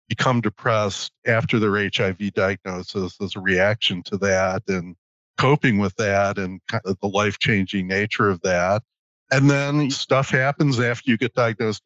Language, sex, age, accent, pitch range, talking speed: English, male, 50-69, American, 95-120 Hz, 145 wpm